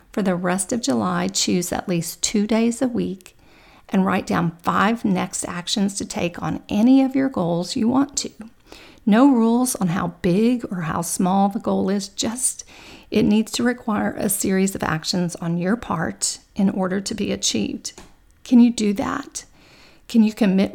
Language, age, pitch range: English, 40-59, 190-235 Hz